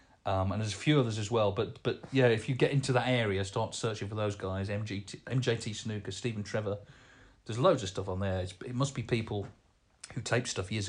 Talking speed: 230 wpm